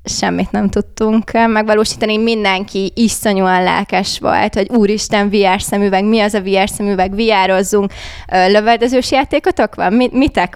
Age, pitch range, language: 20-39, 195-230 Hz, Hungarian